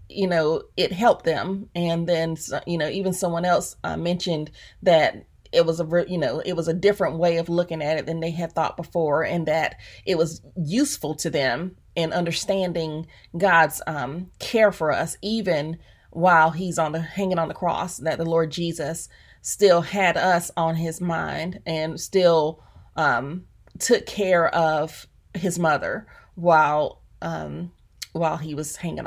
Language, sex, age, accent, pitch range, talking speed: English, female, 30-49, American, 160-180 Hz, 165 wpm